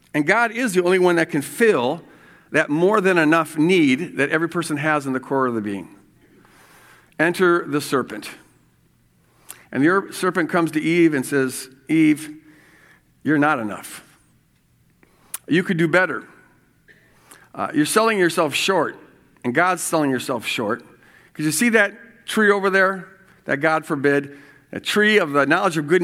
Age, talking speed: 50-69, 155 wpm